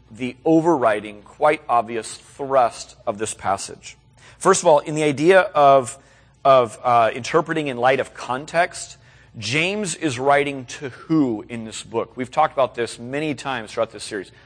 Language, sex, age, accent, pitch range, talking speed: English, male, 30-49, American, 125-190 Hz, 160 wpm